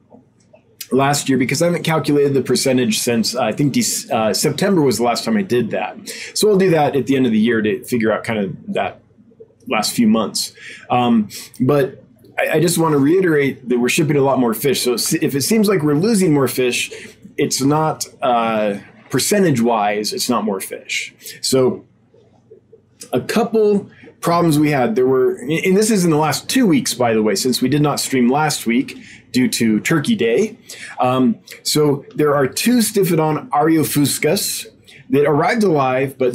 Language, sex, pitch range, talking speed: English, male, 125-170 Hz, 190 wpm